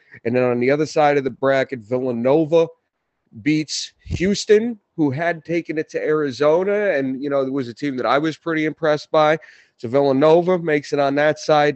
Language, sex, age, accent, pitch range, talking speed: English, male, 40-59, American, 130-170 Hz, 195 wpm